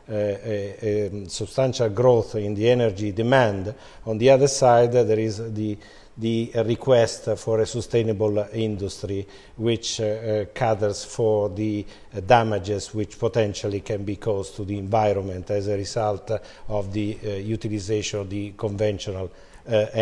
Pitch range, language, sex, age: 105-125 Hz, English, male, 50-69